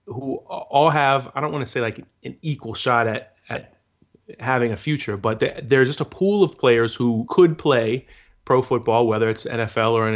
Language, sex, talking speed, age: English, male, 200 wpm, 30-49